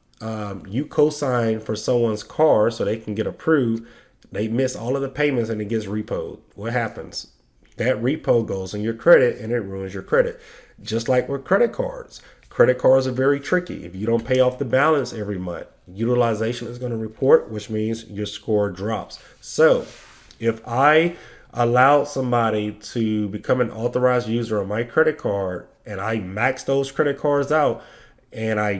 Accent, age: American, 30-49